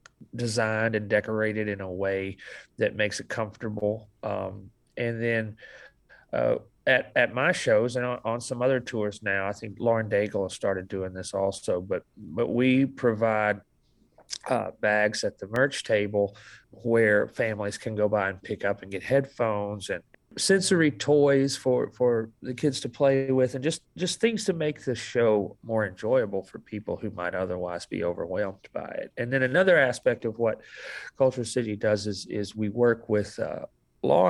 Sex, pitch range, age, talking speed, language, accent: male, 100-125 Hz, 40-59, 175 wpm, English, American